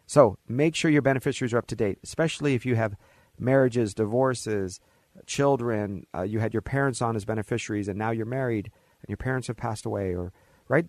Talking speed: 200 wpm